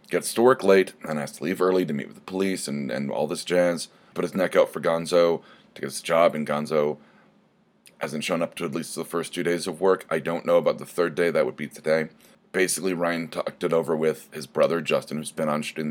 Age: 30-49